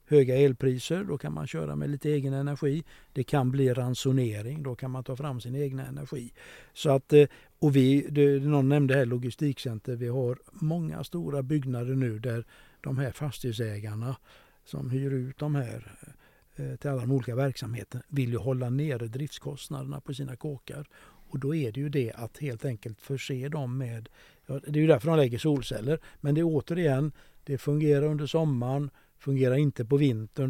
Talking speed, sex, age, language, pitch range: 175 wpm, male, 60-79, Swedish, 130-150 Hz